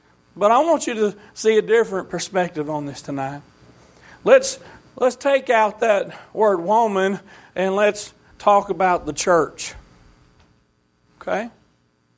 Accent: American